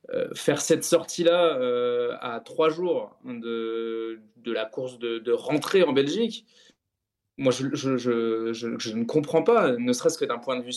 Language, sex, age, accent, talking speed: French, male, 20-39, French, 185 wpm